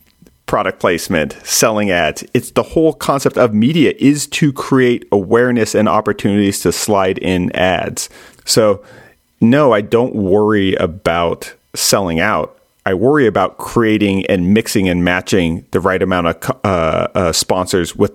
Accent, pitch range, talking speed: American, 95-110 Hz, 145 wpm